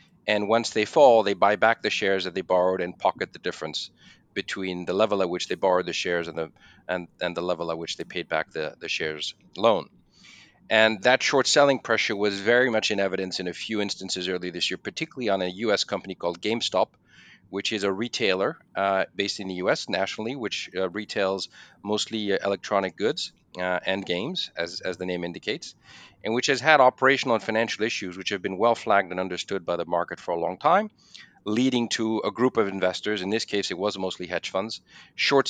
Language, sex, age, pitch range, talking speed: English, male, 40-59, 90-110 Hz, 210 wpm